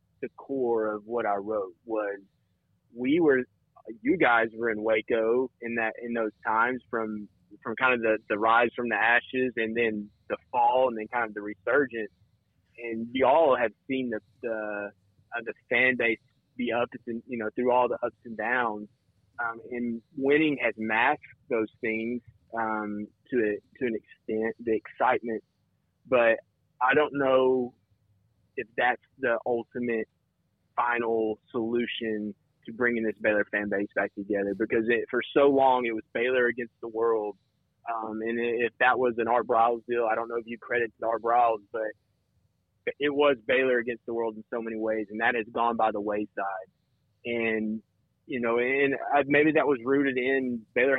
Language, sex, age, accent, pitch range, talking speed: English, male, 30-49, American, 110-120 Hz, 175 wpm